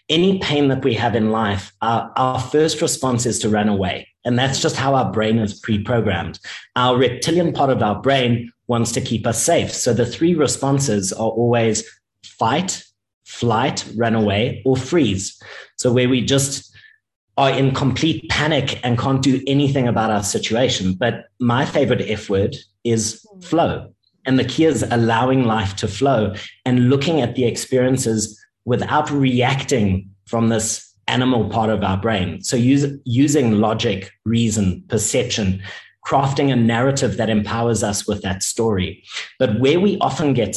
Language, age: English, 30-49